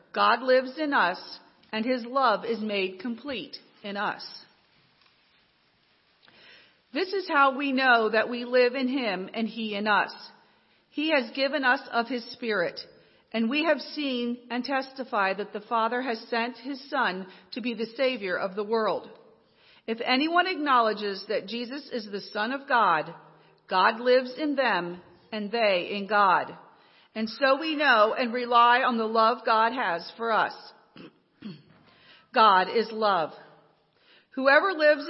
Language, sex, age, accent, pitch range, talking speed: English, female, 40-59, American, 220-275 Hz, 150 wpm